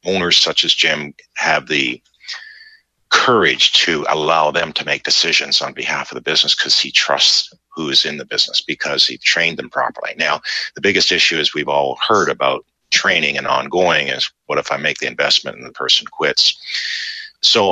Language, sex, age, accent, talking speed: English, male, 50-69, American, 185 wpm